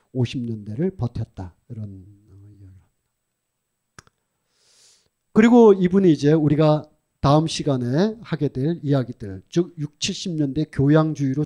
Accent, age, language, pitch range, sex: native, 40-59, Korean, 125-190 Hz, male